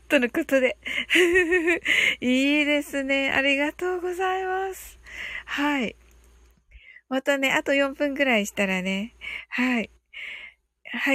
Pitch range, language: 245-315 Hz, Japanese